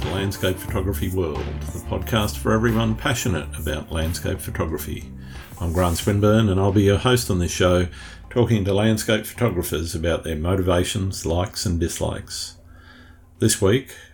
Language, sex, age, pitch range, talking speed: English, male, 50-69, 85-105 Hz, 145 wpm